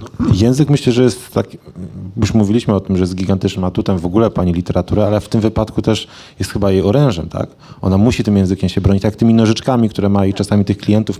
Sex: male